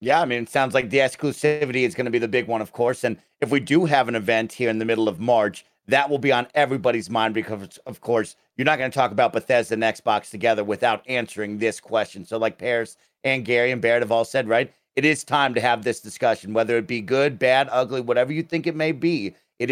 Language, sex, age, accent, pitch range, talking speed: English, male, 40-59, American, 115-140 Hz, 255 wpm